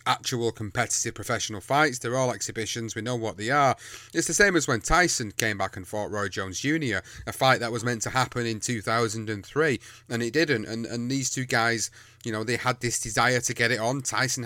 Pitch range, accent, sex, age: 115-135 Hz, British, male, 30-49